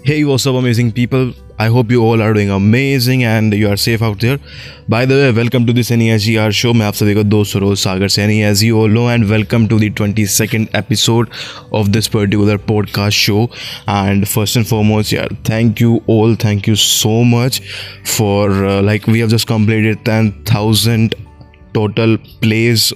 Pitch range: 105-115 Hz